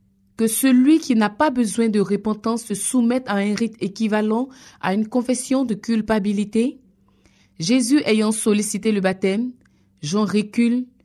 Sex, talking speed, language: female, 140 wpm, French